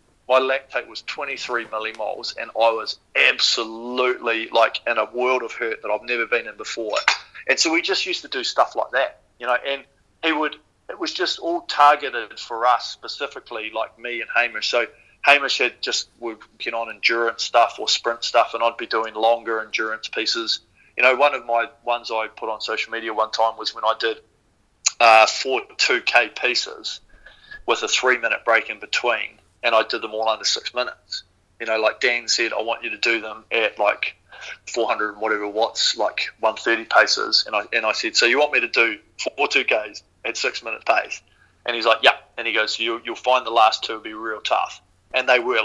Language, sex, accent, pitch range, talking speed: English, male, Australian, 115-150 Hz, 210 wpm